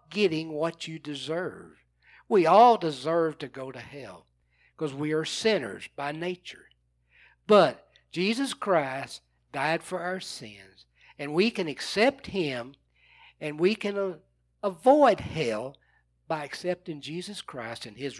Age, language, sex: 60-79, English, male